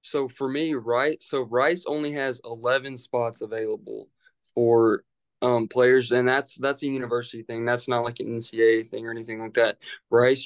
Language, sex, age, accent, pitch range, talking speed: English, male, 20-39, American, 115-130 Hz, 180 wpm